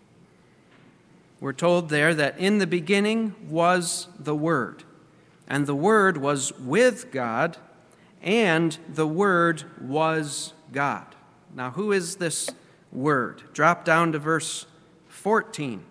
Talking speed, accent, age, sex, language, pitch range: 115 wpm, American, 40-59, male, English, 150-180 Hz